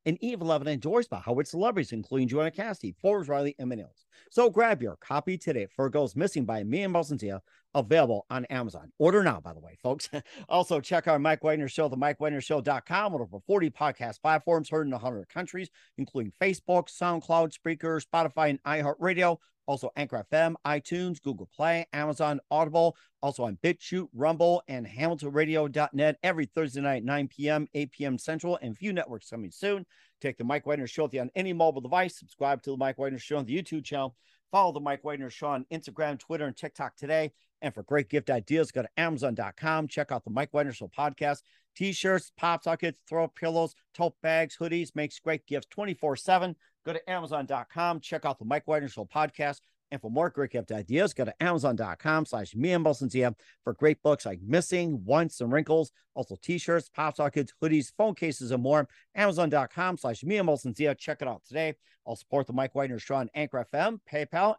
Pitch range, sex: 135-165 Hz, male